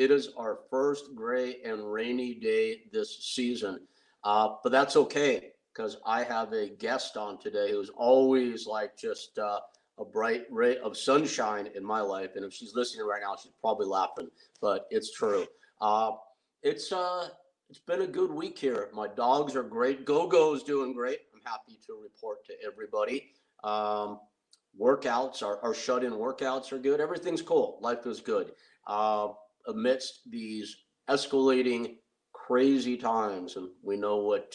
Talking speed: 160 wpm